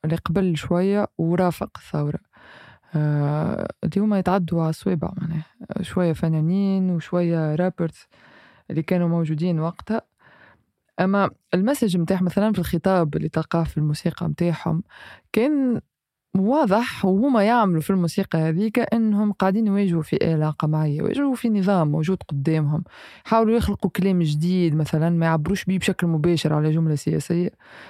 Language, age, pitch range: Arabic, 20-39, 160-195 Hz